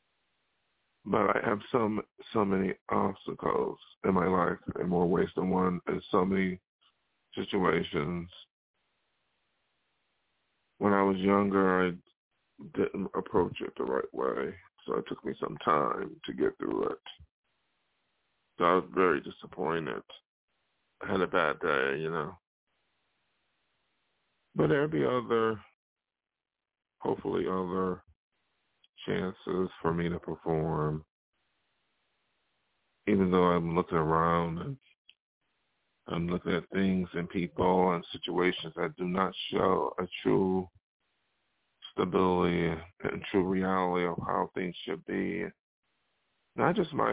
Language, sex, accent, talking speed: English, male, American, 120 wpm